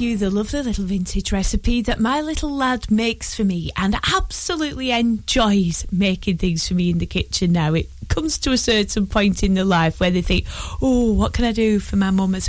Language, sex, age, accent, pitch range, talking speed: English, female, 30-49, British, 180-235 Hz, 215 wpm